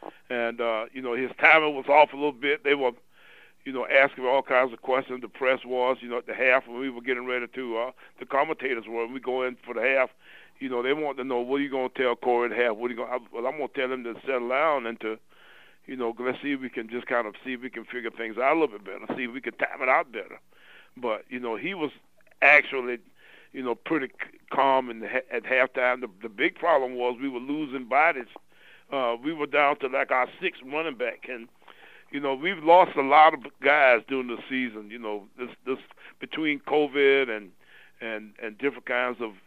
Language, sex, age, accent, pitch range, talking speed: English, male, 60-79, American, 120-135 Hz, 245 wpm